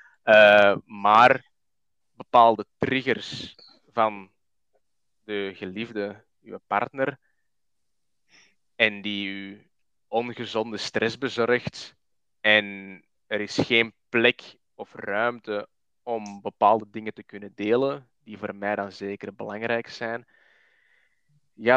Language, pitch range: Dutch, 100-115 Hz